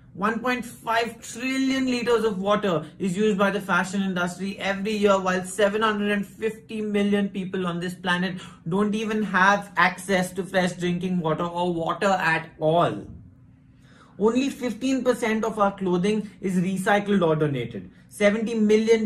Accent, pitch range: Indian, 155-195 Hz